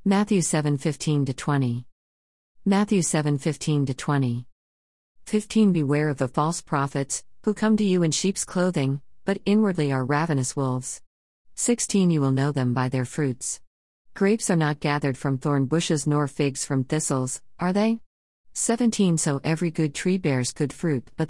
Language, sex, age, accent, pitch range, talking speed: English, female, 50-69, American, 135-175 Hz, 165 wpm